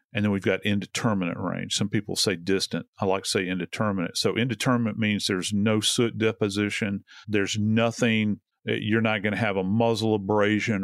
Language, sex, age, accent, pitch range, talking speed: English, male, 50-69, American, 100-115 Hz, 175 wpm